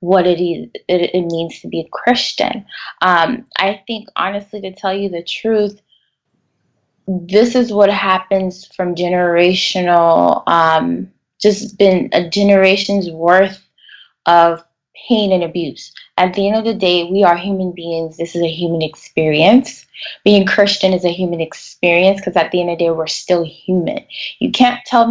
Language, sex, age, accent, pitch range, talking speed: English, female, 20-39, American, 175-210 Hz, 160 wpm